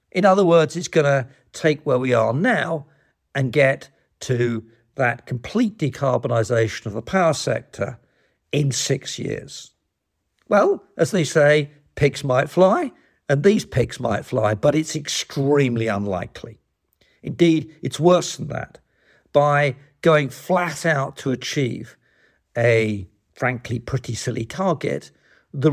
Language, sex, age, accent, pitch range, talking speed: English, male, 50-69, British, 120-155 Hz, 135 wpm